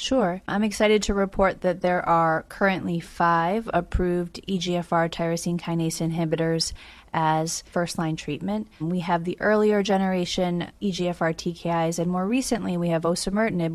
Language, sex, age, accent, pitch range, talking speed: English, female, 30-49, American, 160-185 Hz, 130 wpm